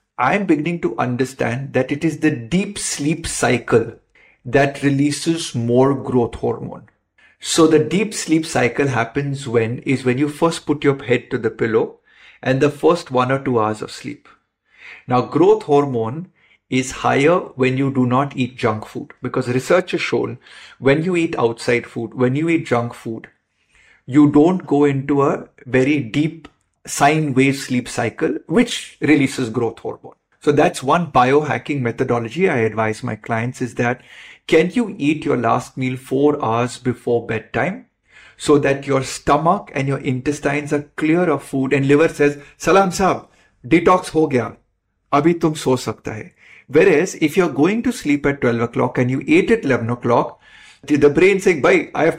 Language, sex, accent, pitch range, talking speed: Hindi, male, native, 125-160 Hz, 170 wpm